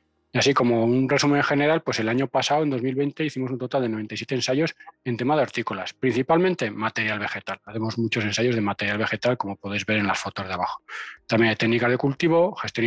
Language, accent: Spanish, Spanish